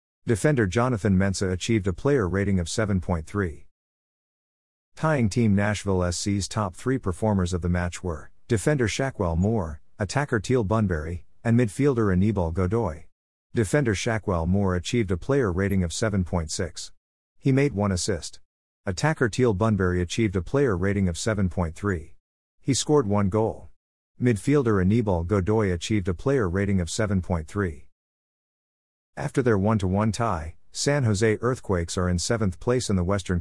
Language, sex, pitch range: English, male, 90-115 Hz